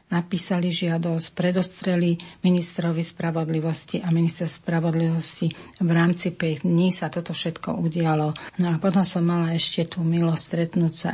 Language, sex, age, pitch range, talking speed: Slovak, female, 40-59, 160-175 Hz, 135 wpm